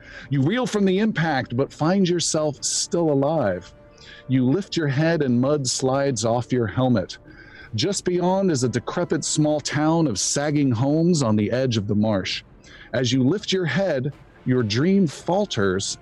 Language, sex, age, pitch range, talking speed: English, male, 40-59, 120-160 Hz, 165 wpm